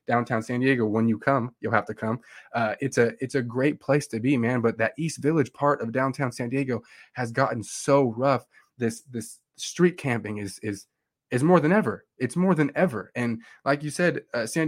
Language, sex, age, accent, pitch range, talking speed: English, male, 20-39, American, 120-145 Hz, 215 wpm